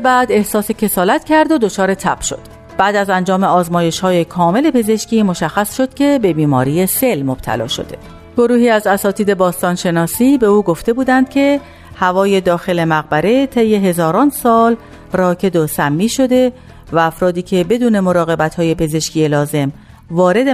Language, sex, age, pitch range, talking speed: Persian, female, 40-59, 165-235 Hz, 145 wpm